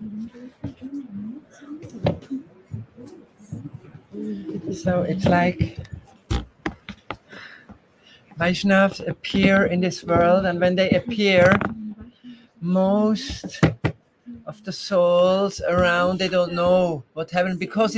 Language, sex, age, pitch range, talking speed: English, male, 50-69, 180-230 Hz, 75 wpm